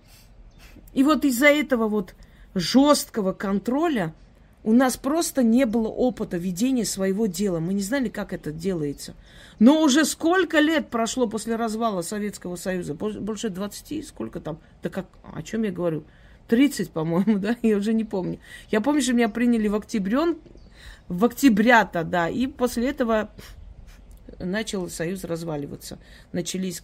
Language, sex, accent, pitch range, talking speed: Russian, female, native, 185-240 Hz, 145 wpm